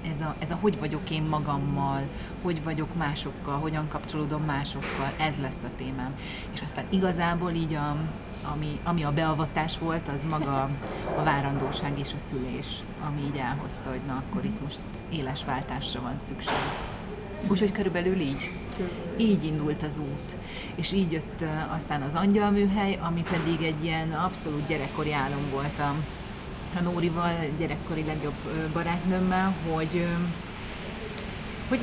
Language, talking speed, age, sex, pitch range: Hungarian, 140 wpm, 30-49, female, 150-185 Hz